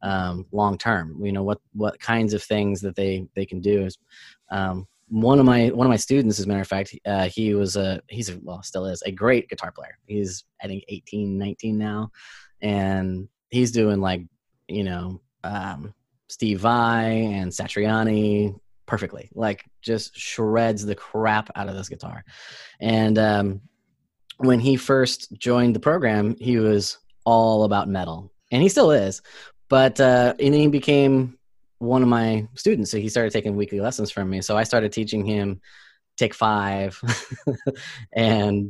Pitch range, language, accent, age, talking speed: 100-120 Hz, English, American, 20-39, 170 wpm